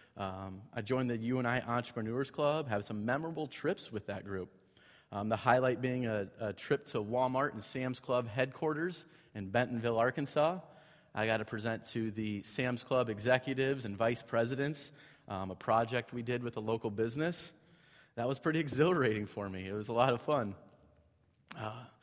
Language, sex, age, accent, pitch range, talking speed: English, male, 30-49, American, 110-140 Hz, 175 wpm